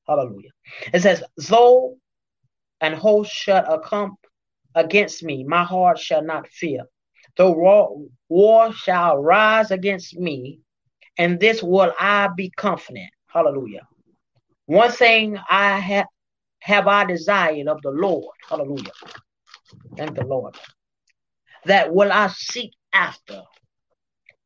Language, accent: English, American